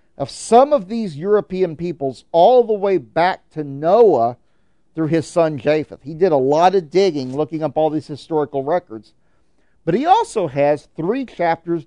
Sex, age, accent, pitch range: male, 40-59, American, 155-215 Hz